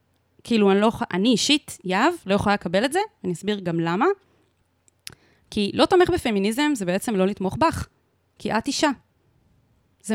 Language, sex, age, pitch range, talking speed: Hebrew, female, 20-39, 195-255 Hz, 165 wpm